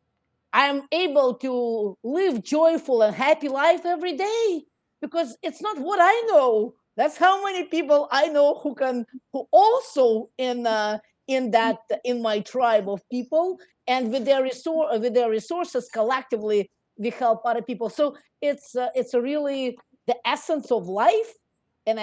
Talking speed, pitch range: 155 wpm, 200-270 Hz